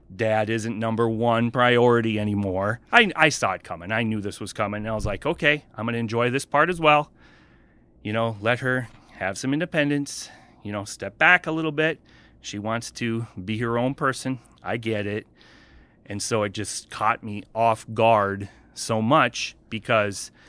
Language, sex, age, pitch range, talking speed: English, male, 30-49, 105-125 Hz, 180 wpm